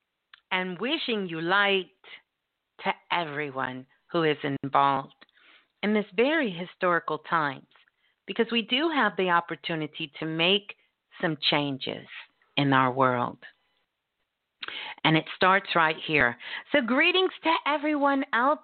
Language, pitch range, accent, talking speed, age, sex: English, 165-225 Hz, American, 120 wpm, 50-69, female